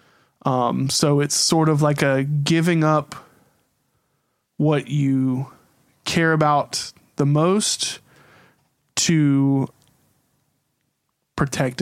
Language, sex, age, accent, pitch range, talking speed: English, male, 20-39, American, 135-155 Hz, 85 wpm